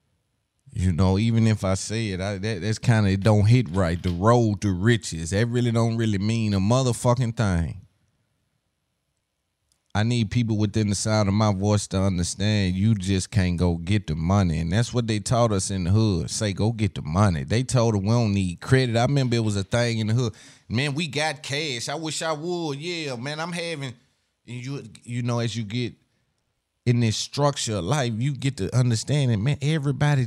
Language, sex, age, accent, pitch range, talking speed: English, male, 30-49, American, 105-135 Hz, 210 wpm